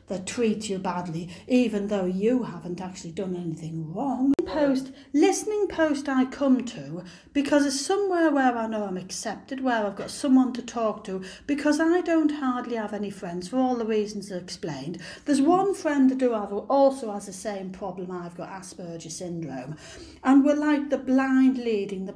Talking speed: 185 wpm